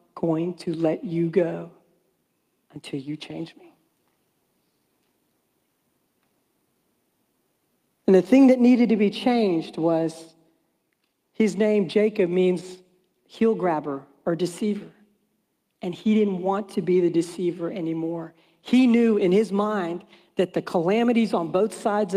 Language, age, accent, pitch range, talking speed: English, 50-69, American, 170-220 Hz, 125 wpm